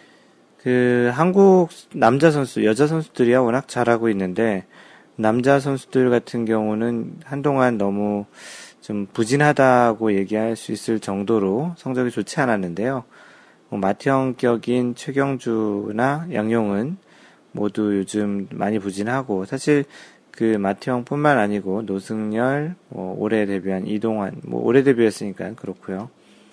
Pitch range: 105-135 Hz